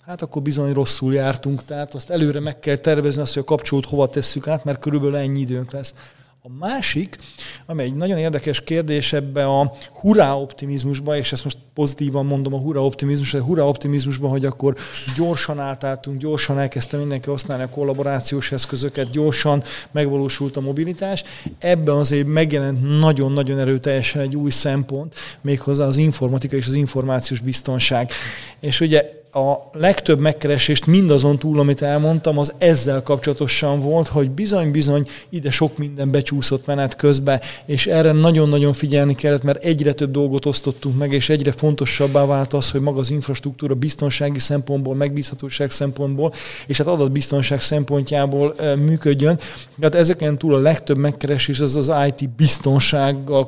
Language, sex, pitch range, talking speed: Hungarian, male, 140-150 Hz, 150 wpm